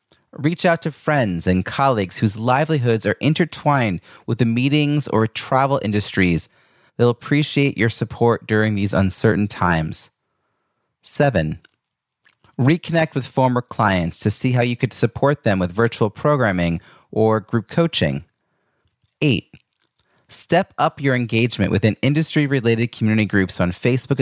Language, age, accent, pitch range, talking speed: English, 30-49, American, 100-135 Hz, 130 wpm